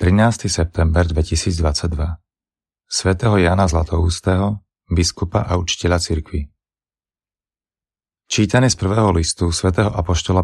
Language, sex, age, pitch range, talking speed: Slovak, male, 30-49, 85-95 Hz, 90 wpm